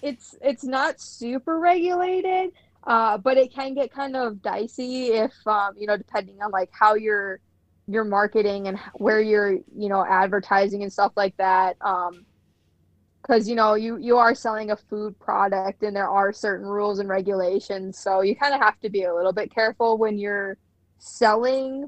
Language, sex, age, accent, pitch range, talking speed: English, female, 20-39, American, 195-240 Hz, 180 wpm